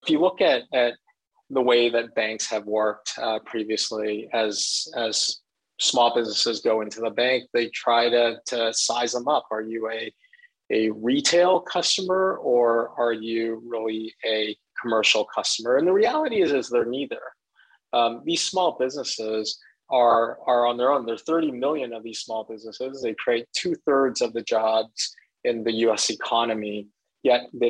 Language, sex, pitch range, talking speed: English, male, 110-135 Hz, 165 wpm